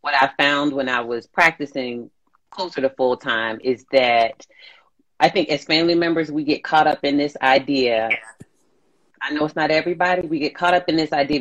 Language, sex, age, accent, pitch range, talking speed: English, female, 30-49, American, 130-160 Hz, 195 wpm